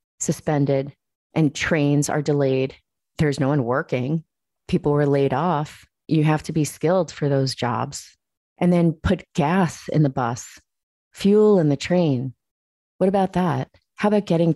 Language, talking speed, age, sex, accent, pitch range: English, 155 wpm, 30-49, female, American, 135-165 Hz